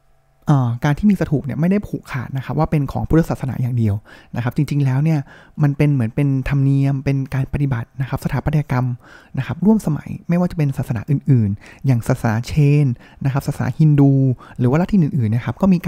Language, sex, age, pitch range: Thai, male, 20-39, 130-160 Hz